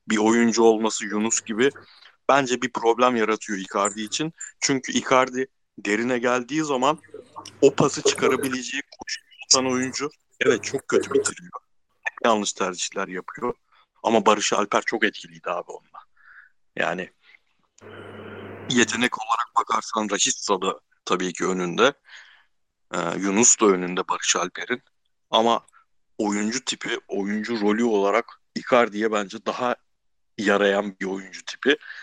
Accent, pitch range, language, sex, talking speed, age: native, 100-125 Hz, Turkish, male, 120 wpm, 60-79